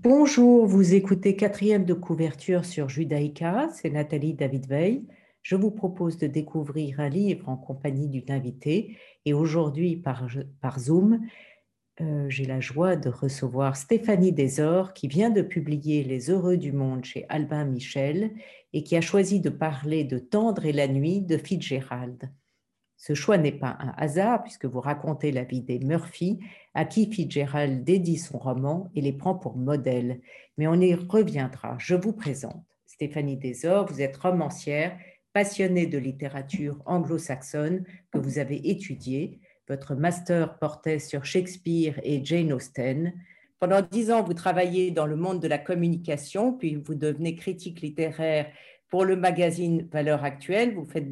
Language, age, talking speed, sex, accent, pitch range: French, 50-69, 160 wpm, female, French, 140-185 Hz